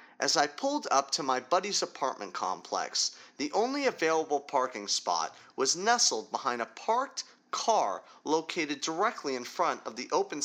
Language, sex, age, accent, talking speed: English, male, 30-49, American, 155 wpm